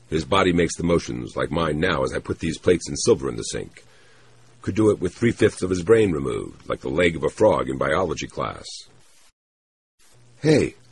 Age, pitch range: 50-69, 95-125 Hz